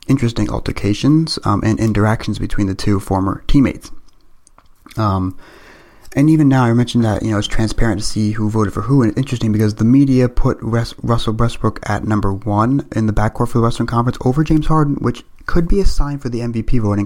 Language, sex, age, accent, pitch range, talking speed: English, male, 30-49, American, 105-125 Hz, 210 wpm